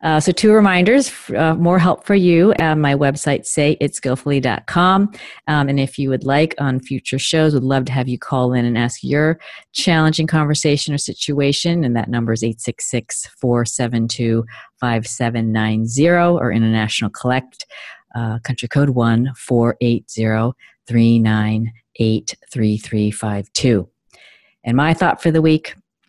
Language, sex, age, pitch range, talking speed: English, female, 40-59, 110-140 Hz, 125 wpm